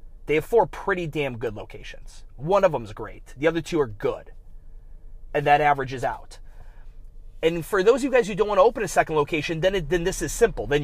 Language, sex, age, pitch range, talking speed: English, male, 30-49, 145-180 Hz, 220 wpm